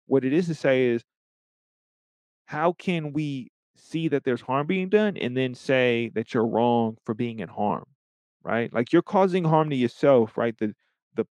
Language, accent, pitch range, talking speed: English, American, 115-155 Hz, 185 wpm